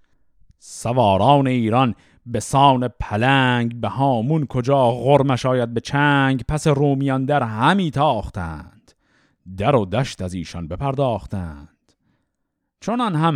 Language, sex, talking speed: Persian, male, 115 wpm